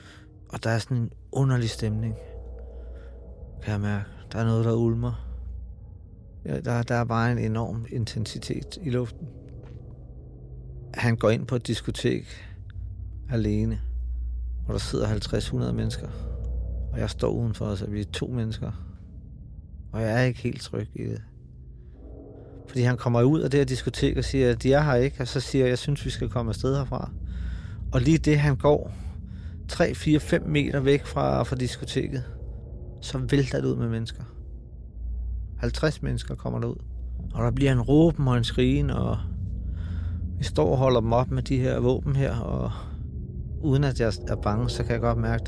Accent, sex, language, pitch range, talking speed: native, male, Danish, 85-125 Hz, 180 wpm